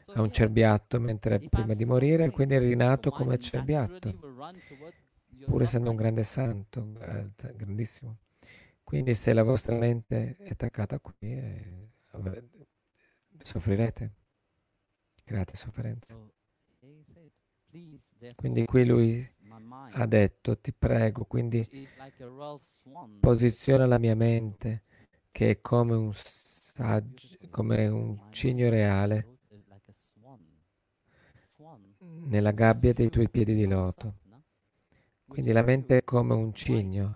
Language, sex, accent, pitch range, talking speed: Italian, male, native, 105-125 Hz, 105 wpm